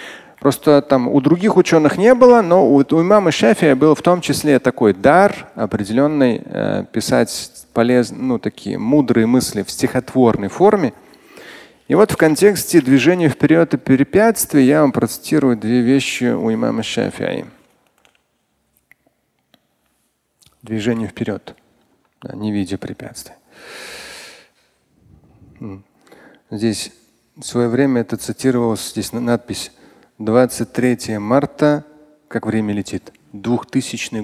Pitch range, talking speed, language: 110-155 Hz, 110 wpm, Russian